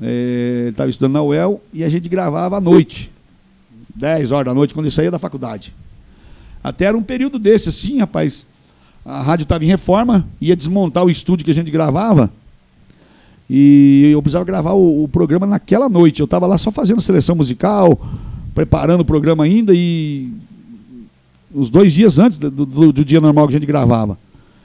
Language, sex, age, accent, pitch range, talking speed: Portuguese, male, 60-79, Brazilian, 145-185 Hz, 180 wpm